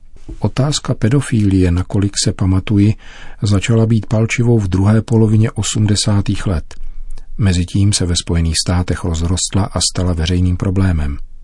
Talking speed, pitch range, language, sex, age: 120 wpm, 90-105 Hz, Czech, male, 40-59